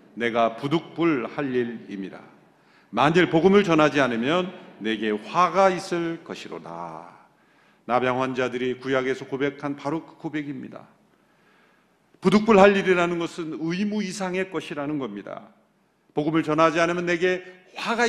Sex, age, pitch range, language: male, 40-59, 130-205 Hz, Korean